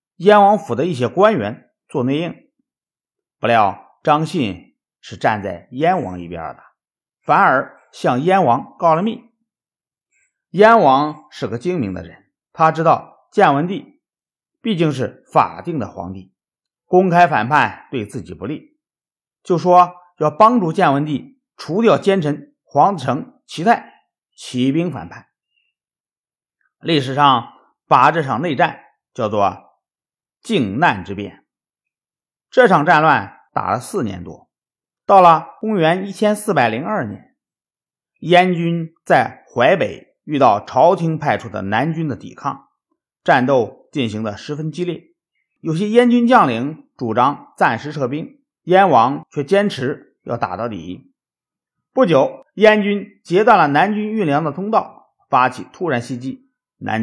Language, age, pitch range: Chinese, 50-69, 140-205 Hz